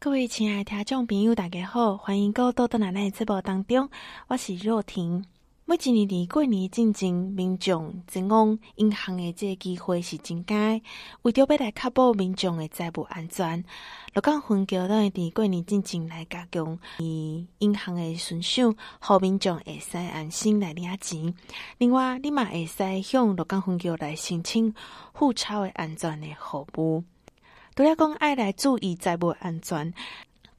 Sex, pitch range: female, 175-230 Hz